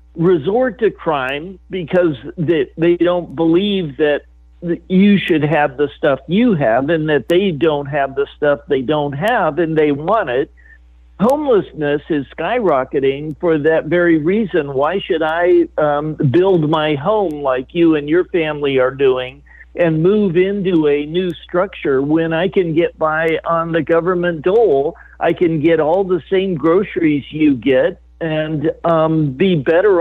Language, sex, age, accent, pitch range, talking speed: English, male, 50-69, American, 150-185 Hz, 155 wpm